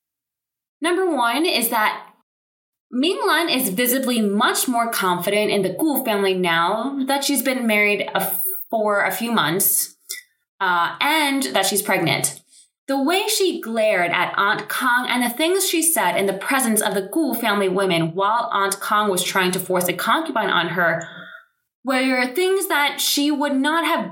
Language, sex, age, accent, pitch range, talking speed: English, female, 20-39, American, 195-290 Hz, 165 wpm